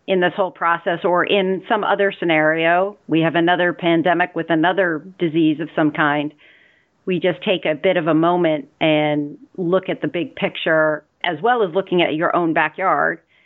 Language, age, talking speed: English, 40-59, 185 wpm